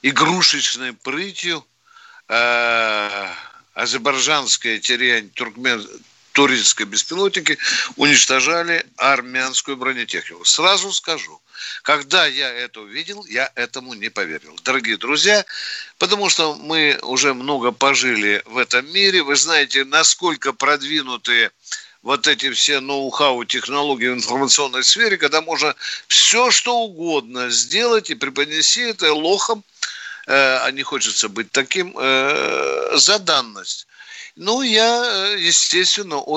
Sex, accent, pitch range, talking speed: male, native, 130-200 Hz, 100 wpm